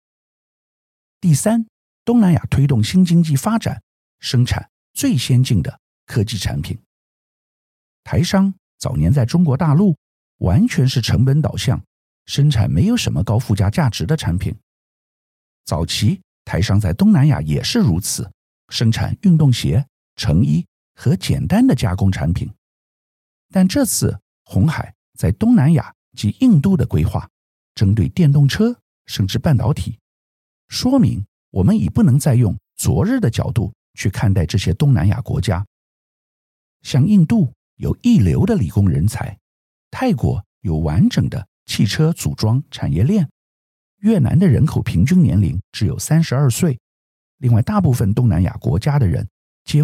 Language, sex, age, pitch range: Chinese, male, 50-69, 100-150 Hz